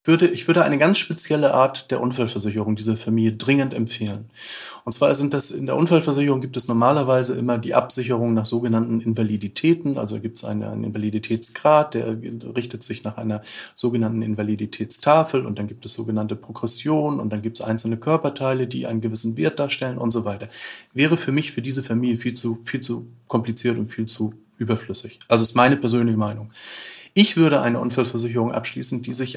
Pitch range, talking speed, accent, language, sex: 115-145 Hz, 180 wpm, German, German, male